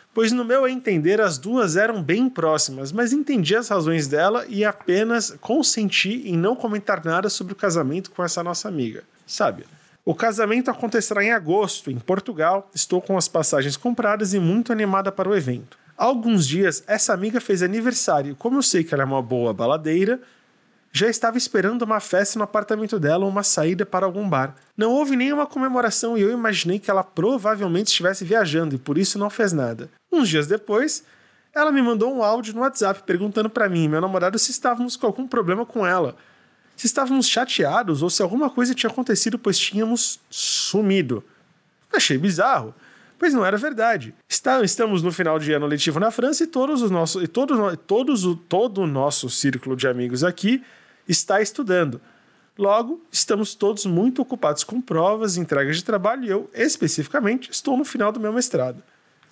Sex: male